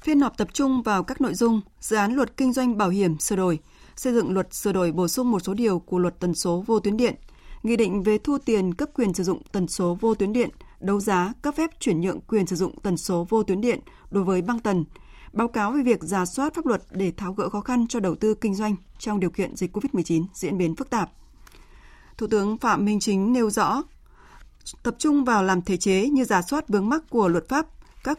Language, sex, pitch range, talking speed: Vietnamese, female, 185-250 Hz, 245 wpm